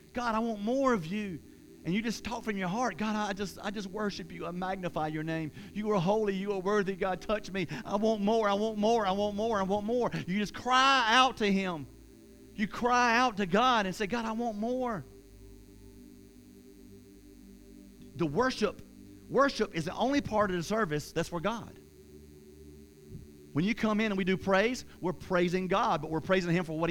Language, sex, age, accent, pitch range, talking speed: English, male, 40-59, American, 145-225 Hz, 205 wpm